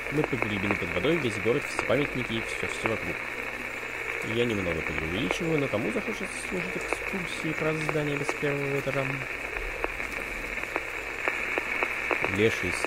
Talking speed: 125 wpm